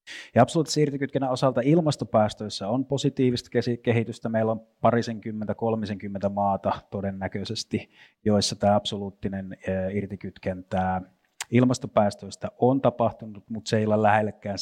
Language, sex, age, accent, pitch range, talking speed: Finnish, male, 30-49, native, 100-120 Hz, 105 wpm